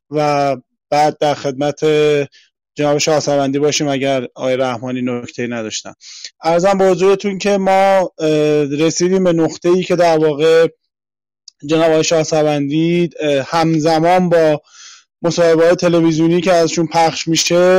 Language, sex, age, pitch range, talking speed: Persian, male, 20-39, 150-175 Hz, 120 wpm